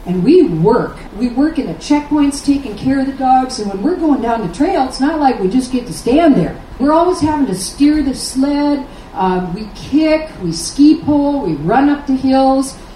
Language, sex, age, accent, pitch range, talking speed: English, female, 50-69, American, 190-265 Hz, 220 wpm